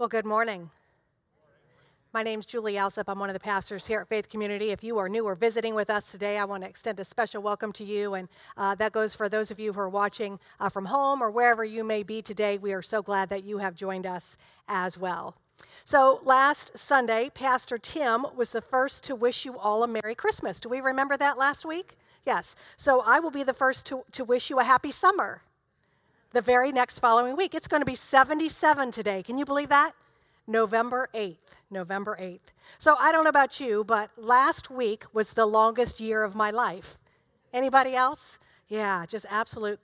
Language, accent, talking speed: English, American, 210 wpm